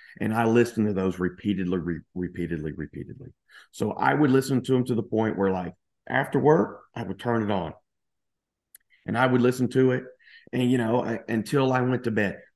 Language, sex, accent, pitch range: English, male, American, 105-140 Hz